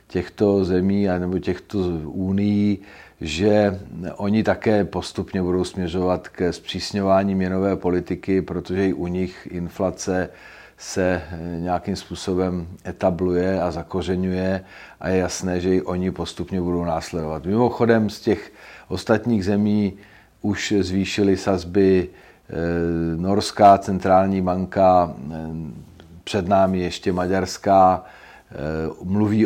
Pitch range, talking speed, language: 85-95 Hz, 105 wpm, Czech